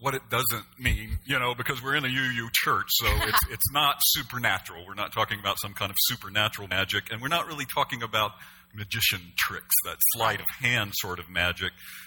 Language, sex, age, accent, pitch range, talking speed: English, male, 50-69, American, 105-150 Hz, 195 wpm